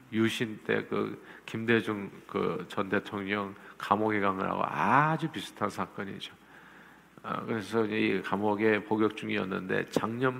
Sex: male